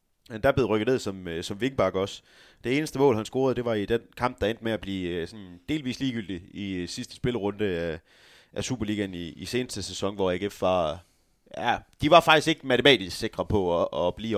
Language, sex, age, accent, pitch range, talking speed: Danish, male, 30-49, native, 95-130 Hz, 215 wpm